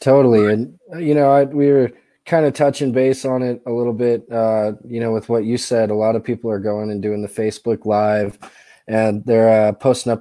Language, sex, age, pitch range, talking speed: English, male, 20-39, 110-125 Hz, 230 wpm